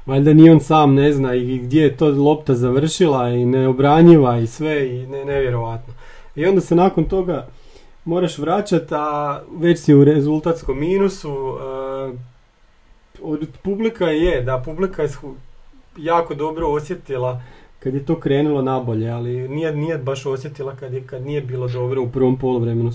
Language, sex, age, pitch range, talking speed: Croatian, male, 30-49, 130-155 Hz, 160 wpm